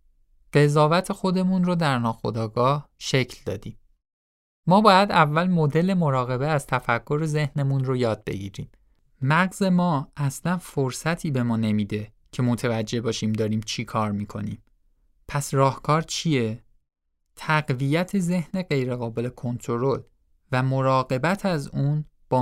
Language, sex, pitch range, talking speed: Persian, male, 110-155 Hz, 120 wpm